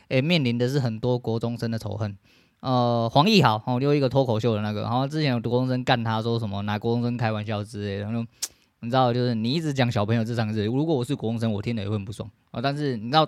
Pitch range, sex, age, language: 105-130 Hz, male, 20-39, Chinese